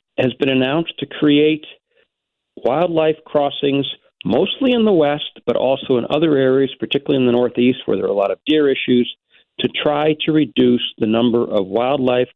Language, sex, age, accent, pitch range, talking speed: English, male, 50-69, American, 120-145 Hz, 175 wpm